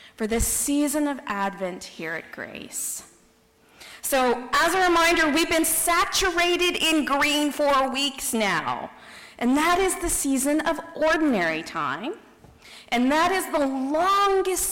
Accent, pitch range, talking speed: American, 230-315 Hz, 135 wpm